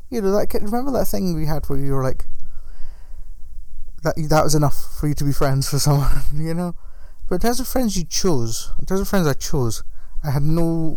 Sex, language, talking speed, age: male, English, 230 wpm, 30-49